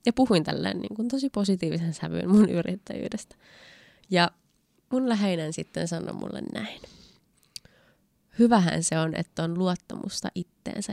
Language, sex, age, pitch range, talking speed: Finnish, female, 20-39, 165-210 Hz, 125 wpm